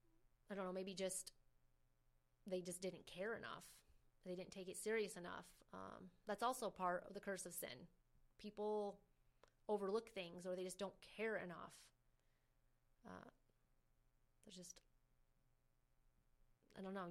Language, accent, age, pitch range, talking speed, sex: English, American, 30-49, 170-200 Hz, 140 wpm, female